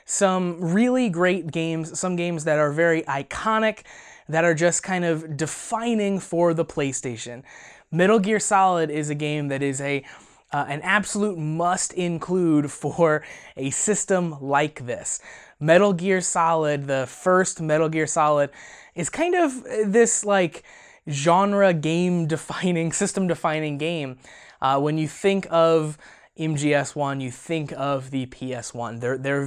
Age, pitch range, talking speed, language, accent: 20-39, 145-185 Hz, 145 wpm, English, American